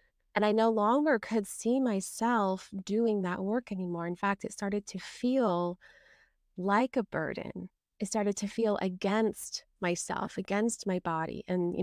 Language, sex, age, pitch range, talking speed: English, female, 20-39, 195-230 Hz, 155 wpm